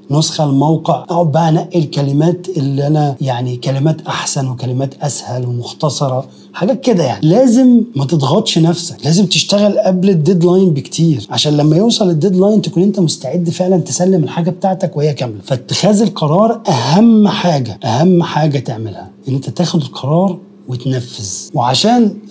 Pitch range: 140-190 Hz